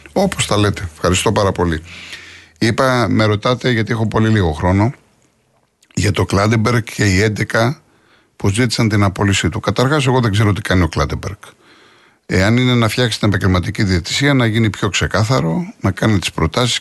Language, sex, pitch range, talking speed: Greek, male, 95-120 Hz, 170 wpm